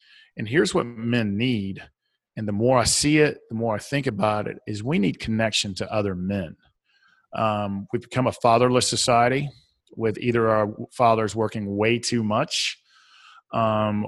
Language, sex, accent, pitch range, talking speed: English, male, American, 105-125 Hz, 165 wpm